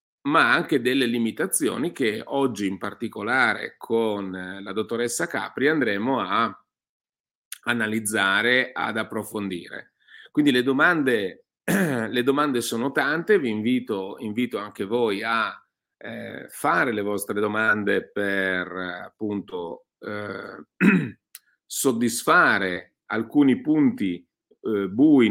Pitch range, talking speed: 105-130 Hz, 100 wpm